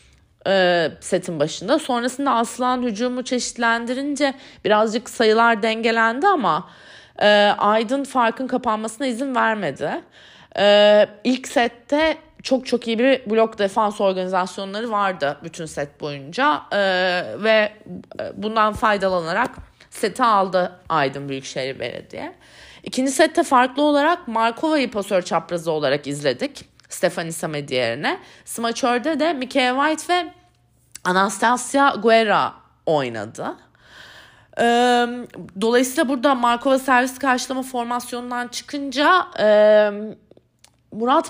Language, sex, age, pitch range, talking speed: Turkish, female, 30-49, 195-260 Hz, 95 wpm